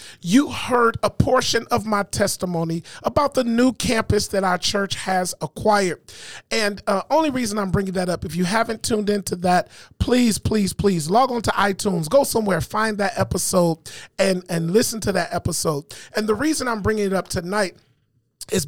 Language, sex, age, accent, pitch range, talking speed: English, male, 40-59, American, 185-235 Hz, 185 wpm